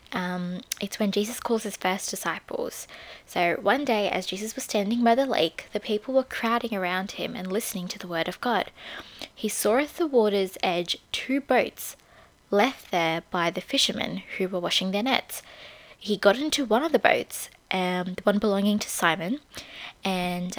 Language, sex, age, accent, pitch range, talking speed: English, female, 20-39, Australian, 180-225 Hz, 185 wpm